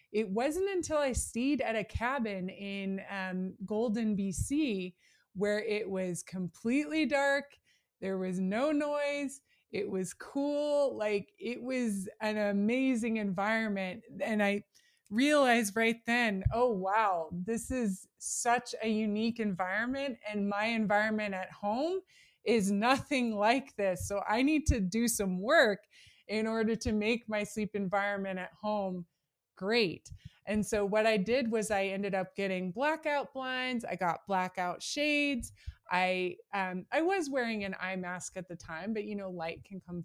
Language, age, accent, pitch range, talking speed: English, 20-39, American, 185-235 Hz, 155 wpm